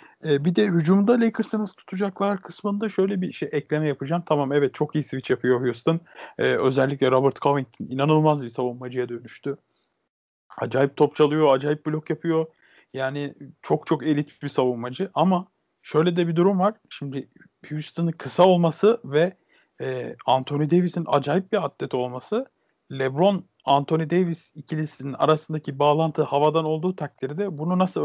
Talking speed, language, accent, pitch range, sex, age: 140 wpm, Turkish, native, 135-180 Hz, male, 40-59